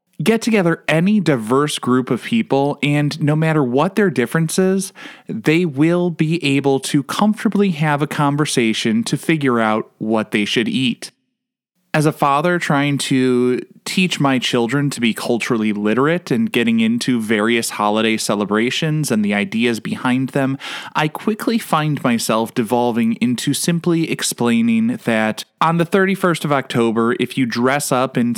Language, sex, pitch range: English, male, 125-175 Hz